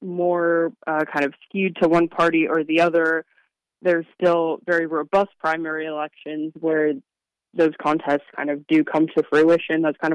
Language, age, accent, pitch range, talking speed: English, 20-39, American, 150-165 Hz, 165 wpm